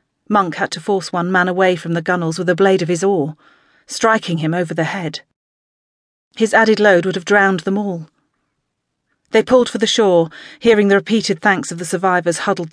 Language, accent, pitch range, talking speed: English, British, 165-215 Hz, 200 wpm